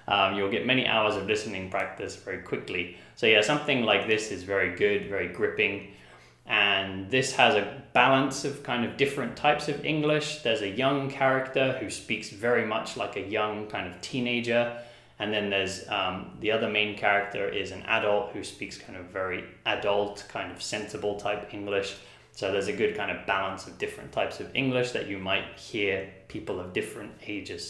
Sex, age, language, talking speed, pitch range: male, 20-39, English, 190 wpm, 100-140 Hz